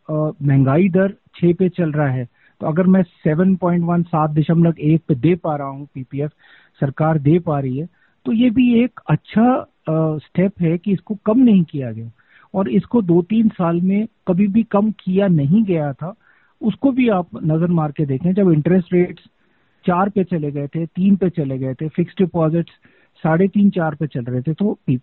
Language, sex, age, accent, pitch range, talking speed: Hindi, male, 50-69, native, 155-200 Hz, 200 wpm